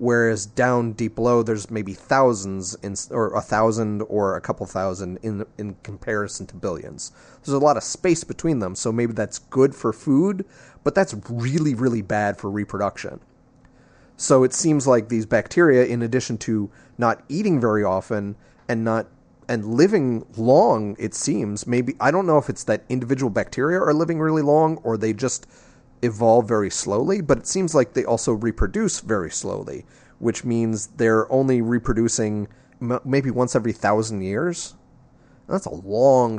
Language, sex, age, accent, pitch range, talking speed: English, male, 30-49, American, 110-135 Hz, 165 wpm